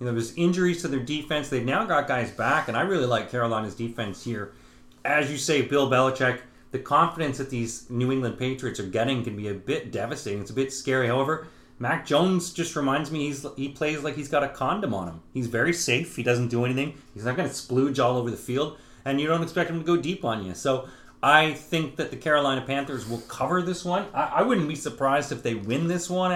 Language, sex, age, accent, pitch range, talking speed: English, male, 30-49, American, 120-160 Hz, 235 wpm